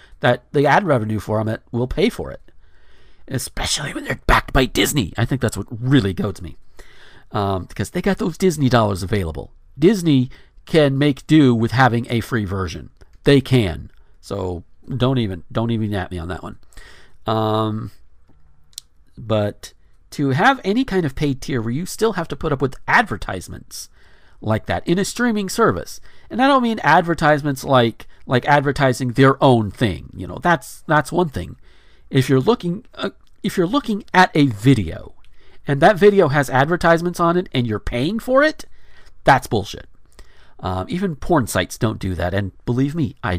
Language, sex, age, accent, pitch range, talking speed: English, male, 40-59, American, 105-160 Hz, 175 wpm